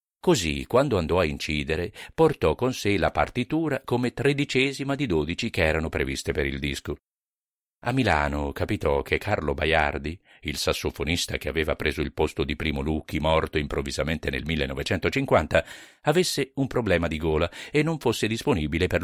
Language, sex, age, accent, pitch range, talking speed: Italian, male, 50-69, native, 80-120 Hz, 160 wpm